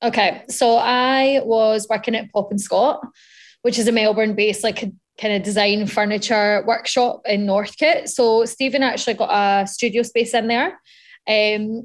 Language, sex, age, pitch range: English, female, 10-29, 205-235 Hz